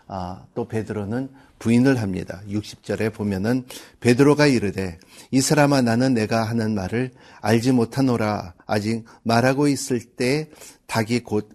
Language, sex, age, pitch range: Korean, male, 50-69, 105-135 Hz